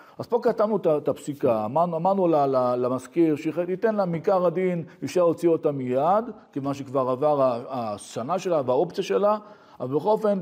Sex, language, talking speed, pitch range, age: male, Hebrew, 145 wpm, 125-180 Hz, 40-59